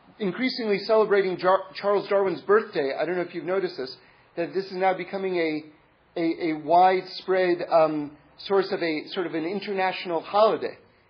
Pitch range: 185-235 Hz